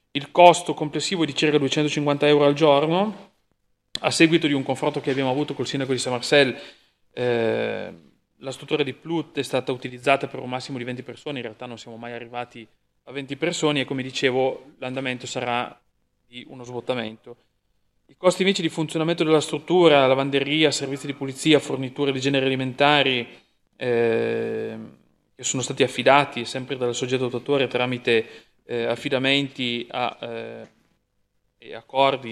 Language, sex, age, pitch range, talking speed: Italian, male, 30-49, 120-145 Hz, 155 wpm